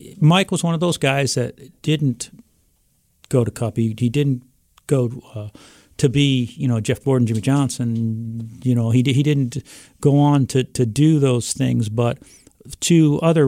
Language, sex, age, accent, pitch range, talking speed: English, male, 50-69, American, 125-150 Hz, 175 wpm